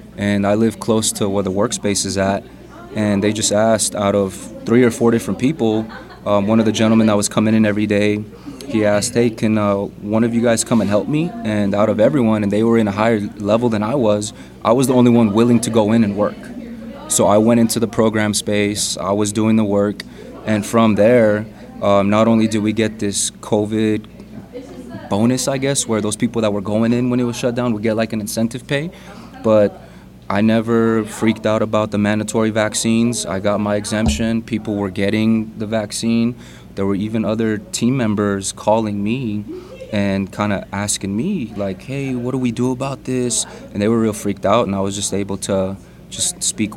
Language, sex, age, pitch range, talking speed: English, male, 20-39, 100-115 Hz, 215 wpm